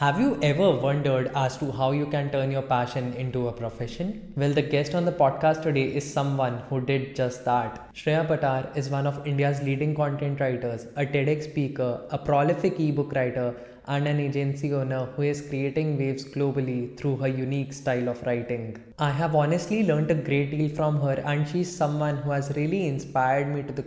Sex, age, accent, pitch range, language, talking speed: male, 10-29, Indian, 125-145 Hz, English, 195 wpm